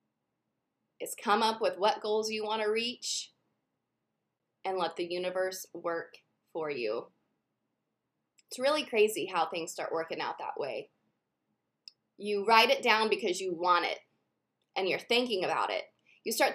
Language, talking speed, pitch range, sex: English, 150 wpm, 210-300 Hz, female